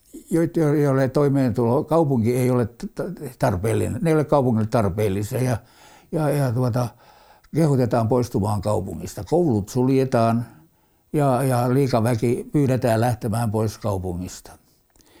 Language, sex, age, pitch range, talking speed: Finnish, male, 60-79, 110-140 Hz, 110 wpm